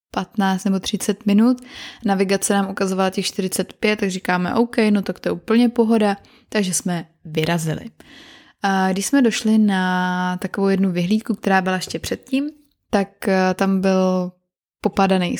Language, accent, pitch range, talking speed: Czech, native, 180-220 Hz, 145 wpm